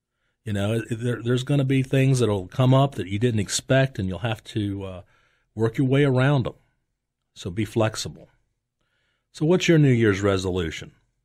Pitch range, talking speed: 110-135 Hz, 180 wpm